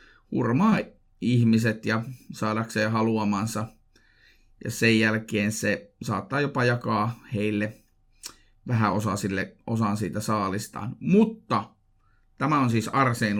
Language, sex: Finnish, male